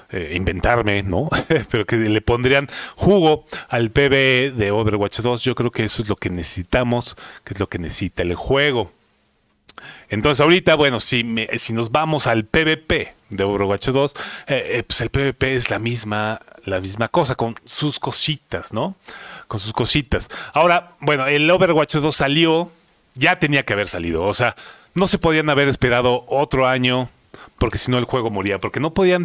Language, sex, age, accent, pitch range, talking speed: Spanish, male, 30-49, Mexican, 110-150 Hz, 180 wpm